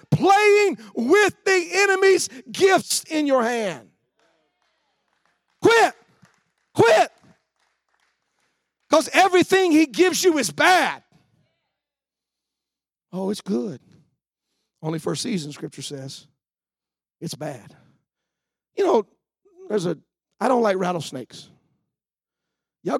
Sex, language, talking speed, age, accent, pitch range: male, English, 95 wpm, 50-69, American, 170-245 Hz